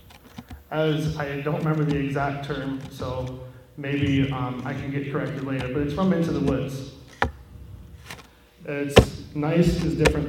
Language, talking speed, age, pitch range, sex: English, 145 wpm, 30-49, 135-160 Hz, male